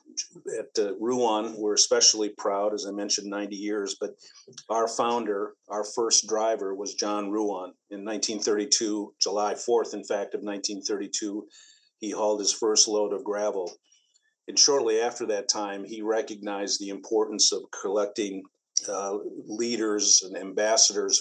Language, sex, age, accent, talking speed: English, male, 50-69, American, 140 wpm